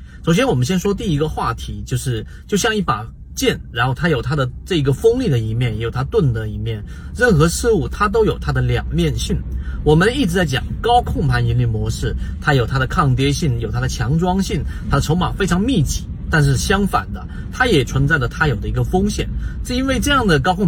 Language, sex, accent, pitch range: Chinese, male, native, 120-160 Hz